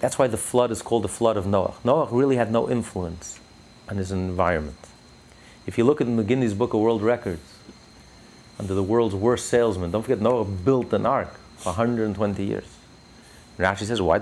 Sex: male